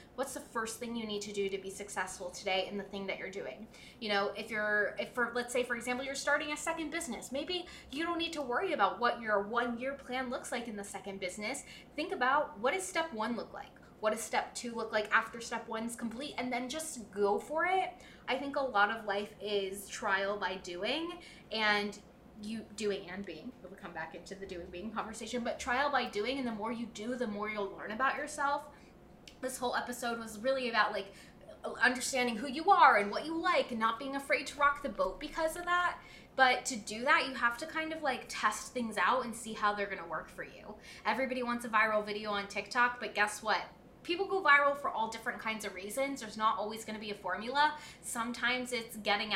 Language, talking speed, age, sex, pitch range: English, 230 wpm, 20-39, female, 205-265 Hz